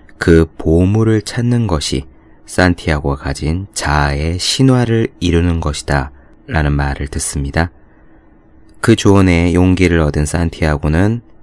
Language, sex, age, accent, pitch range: Korean, male, 20-39, native, 75-95 Hz